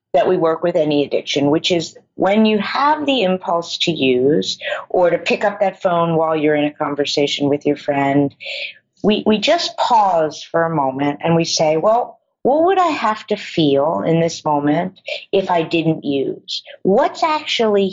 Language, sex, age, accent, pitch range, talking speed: English, female, 50-69, American, 160-215 Hz, 185 wpm